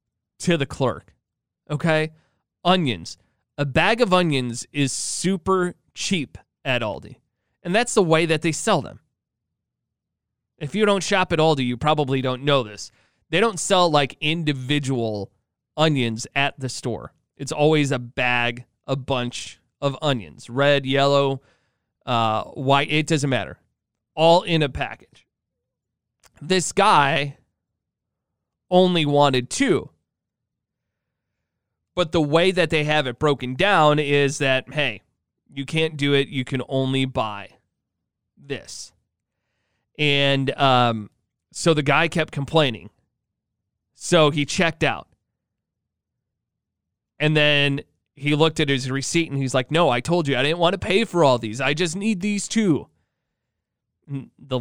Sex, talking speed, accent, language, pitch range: male, 140 wpm, American, English, 120-155 Hz